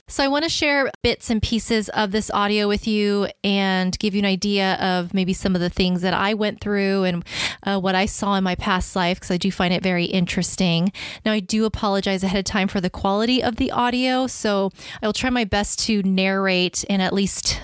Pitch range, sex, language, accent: 175-210 Hz, female, English, American